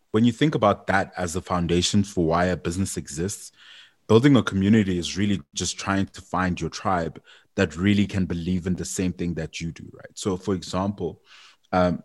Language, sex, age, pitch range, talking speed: English, male, 20-39, 90-100 Hz, 200 wpm